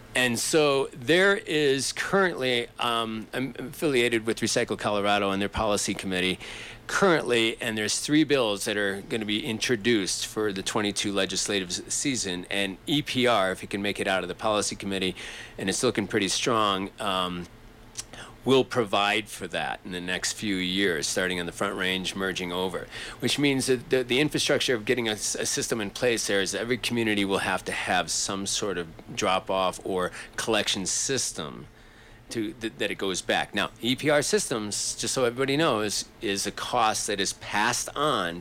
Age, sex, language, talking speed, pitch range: 40-59, male, English, 175 wpm, 100-120 Hz